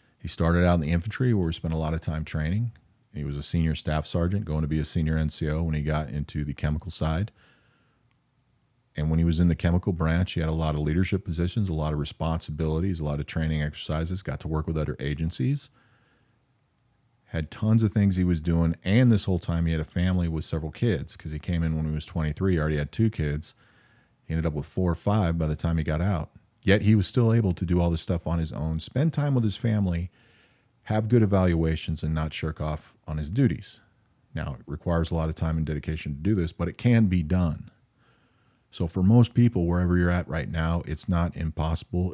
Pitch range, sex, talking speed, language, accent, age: 80-105 Hz, male, 235 wpm, English, American, 40-59